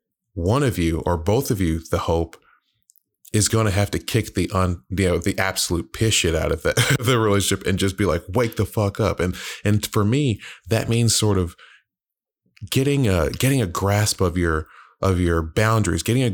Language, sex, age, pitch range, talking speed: English, male, 30-49, 85-110 Hz, 205 wpm